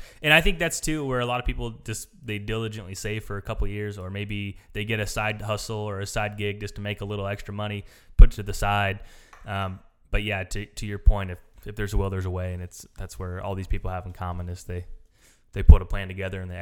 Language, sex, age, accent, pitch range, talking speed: English, male, 20-39, American, 95-110 Hz, 275 wpm